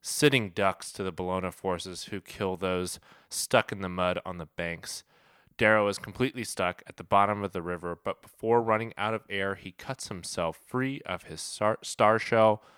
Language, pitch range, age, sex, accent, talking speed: English, 90-105 Hz, 20-39, male, American, 195 wpm